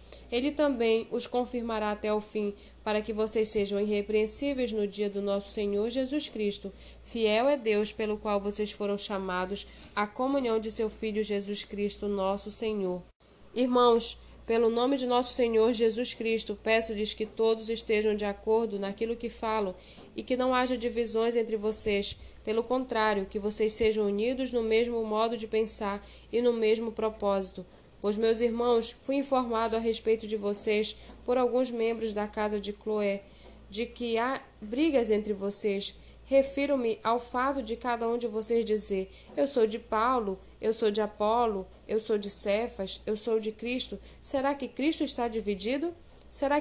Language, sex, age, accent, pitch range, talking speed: Portuguese, female, 10-29, Brazilian, 210-240 Hz, 165 wpm